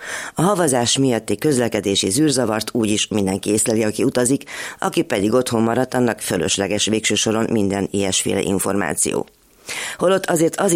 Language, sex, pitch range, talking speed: Hungarian, female, 105-135 Hz, 130 wpm